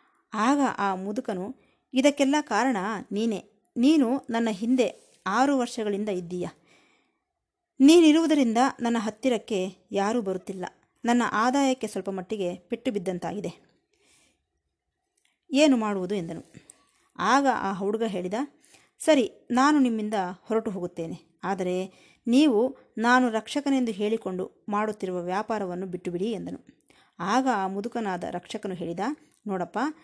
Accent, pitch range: native, 195-255 Hz